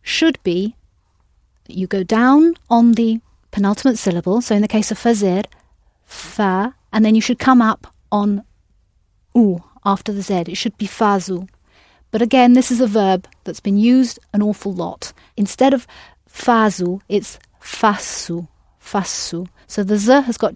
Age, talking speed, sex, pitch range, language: 30-49, 160 wpm, female, 185-230 Hz, English